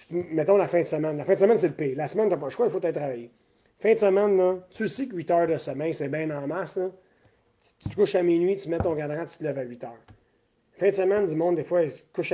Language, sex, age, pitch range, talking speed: French, male, 30-49, 150-195 Hz, 305 wpm